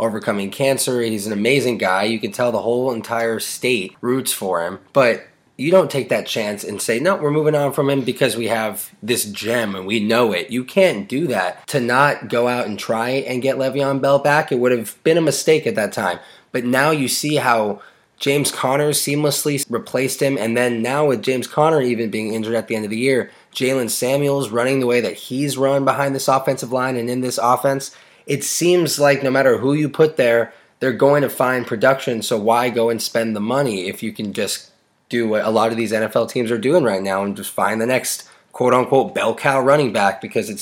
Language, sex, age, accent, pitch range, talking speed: English, male, 20-39, American, 115-135 Hz, 225 wpm